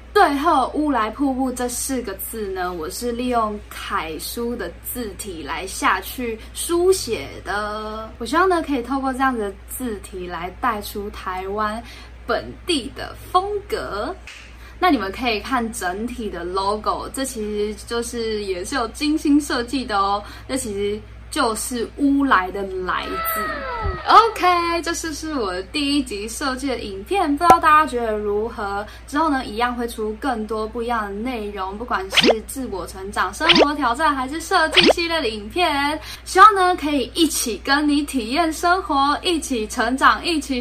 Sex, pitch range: female, 215-305 Hz